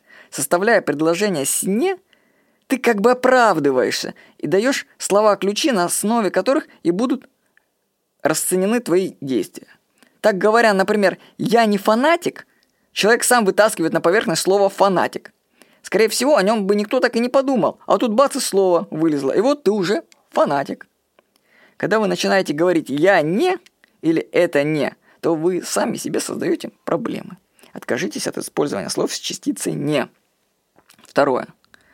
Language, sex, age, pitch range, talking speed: Russian, female, 20-39, 175-250 Hz, 145 wpm